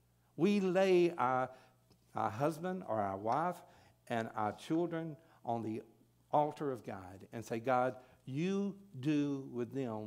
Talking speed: 135 wpm